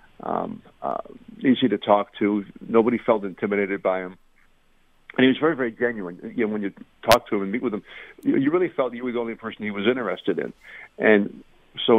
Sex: male